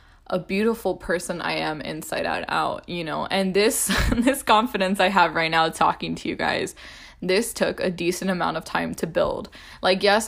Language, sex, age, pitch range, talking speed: English, female, 10-29, 175-200 Hz, 195 wpm